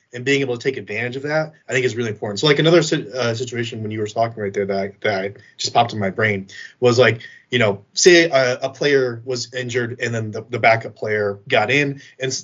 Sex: male